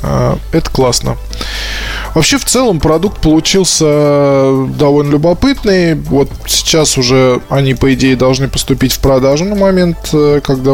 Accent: native